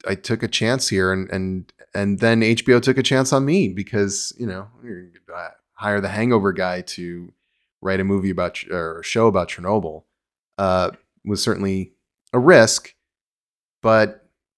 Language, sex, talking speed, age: English, male, 160 wpm, 30-49